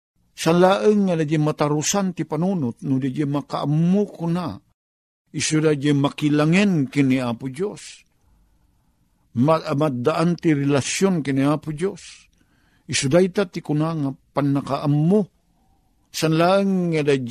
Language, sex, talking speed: Filipino, male, 125 wpm